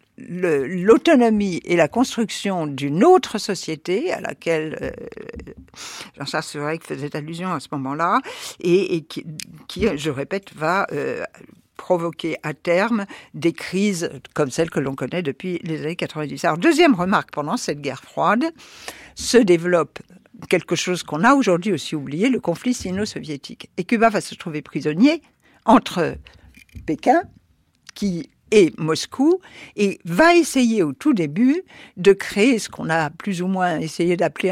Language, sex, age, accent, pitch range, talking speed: French, female, 60-79, French, 165-245 Hz, 150 wpm